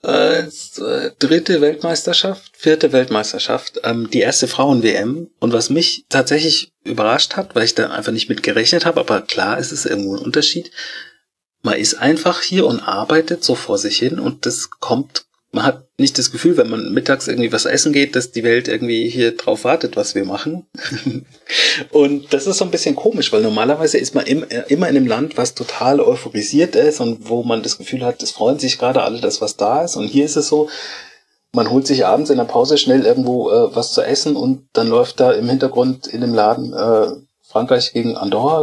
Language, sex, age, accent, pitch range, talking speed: German, male, 40-59, German, 125-170 Hz, 200 wpm